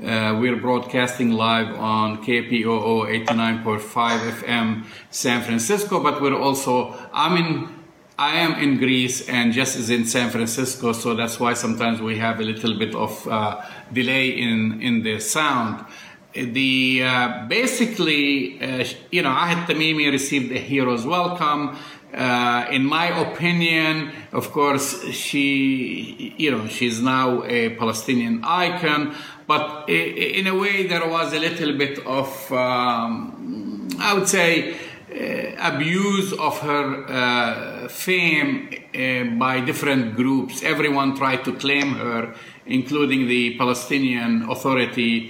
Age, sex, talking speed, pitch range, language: 50-69, male, 130 wpm, 120-150 Hz, English